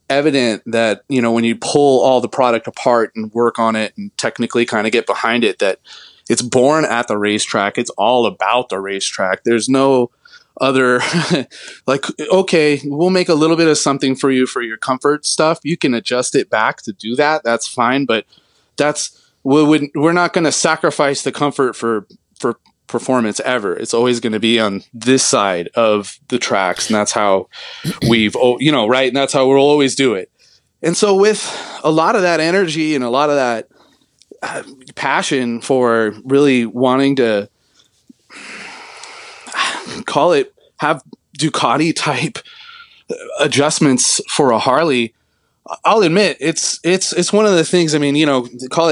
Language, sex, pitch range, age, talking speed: English, male, 120-165 Hz, 30-49, 175 wpm